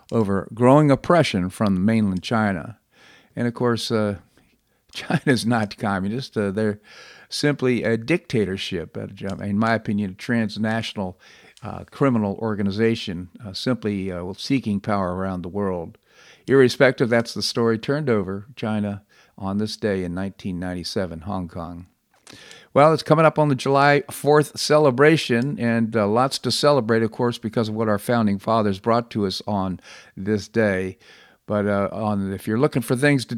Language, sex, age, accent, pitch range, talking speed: English, male, 50-69, American, 100-125 Hz, 155 wpm